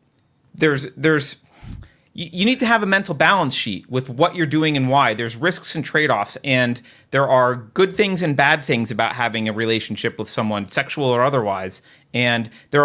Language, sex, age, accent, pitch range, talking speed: English, male, 30-49, American, 125-165 Hz, 180 wpm